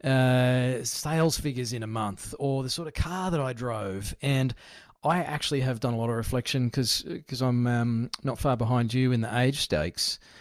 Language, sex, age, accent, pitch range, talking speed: English, male, 30-49, Australian, 120-150 Hz, 200 wpm